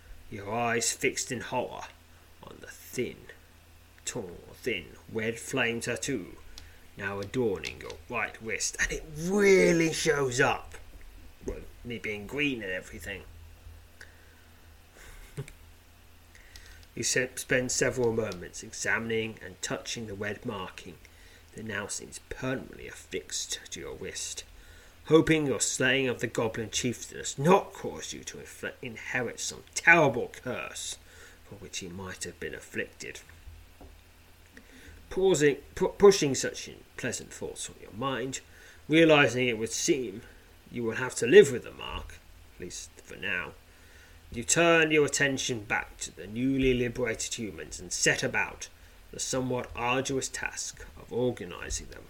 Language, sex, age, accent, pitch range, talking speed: English, male, 30-49, British, 85-125 Hz, 130 wpm